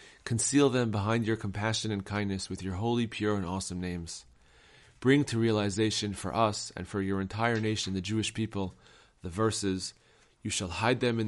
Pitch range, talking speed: 95-110 Hz, 180 wpm